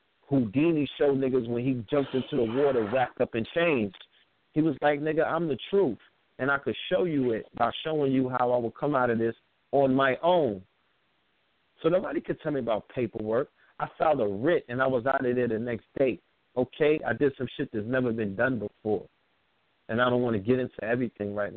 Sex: male